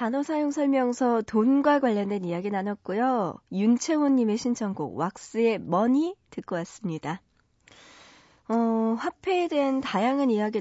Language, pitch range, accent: Korean, 185-255 Hz, native